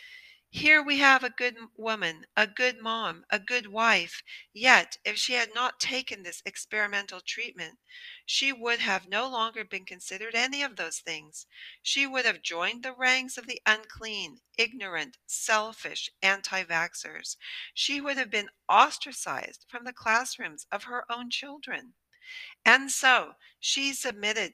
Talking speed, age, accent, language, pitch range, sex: 145 wpm, 50-69, American, English, 180-255 Hz, female